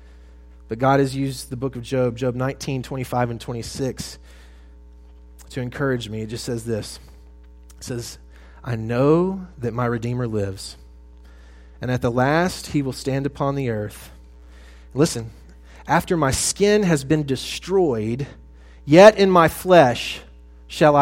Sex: male